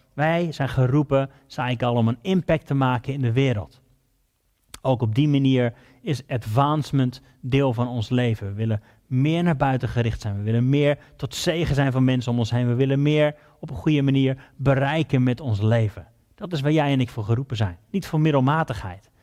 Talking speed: 205 wpm